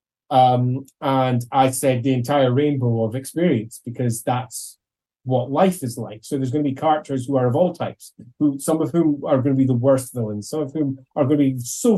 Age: 30-49